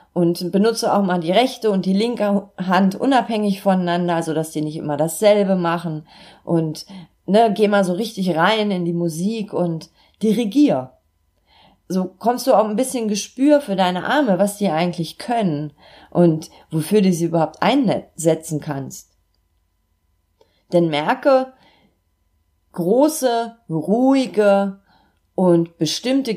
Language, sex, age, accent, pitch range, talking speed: German, female, 30-49, German, 150-200 Hz, 130 wpm